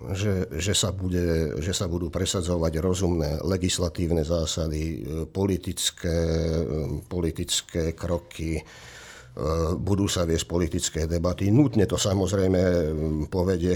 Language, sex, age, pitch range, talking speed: Slovak, male, 50-69, 85-110 Hz, 100 wpm